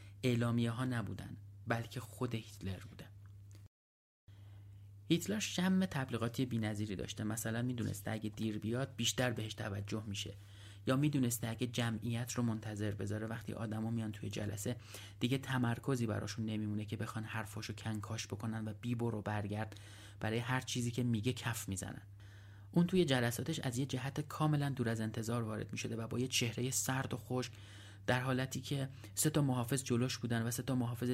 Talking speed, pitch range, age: 160 wpm, 105-125 Hz, 30-49